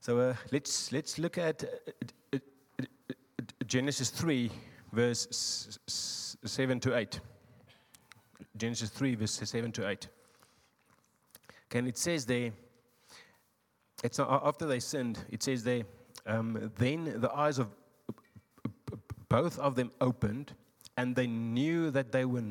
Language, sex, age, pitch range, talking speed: English, male, 30-49, 110-130 Hz, 145 wpm